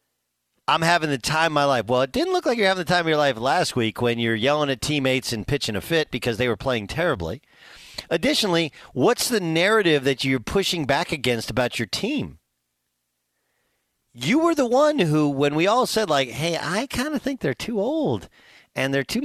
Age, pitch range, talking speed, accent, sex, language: 40-59, 120-180 Hz, 210 wpm, American, male, English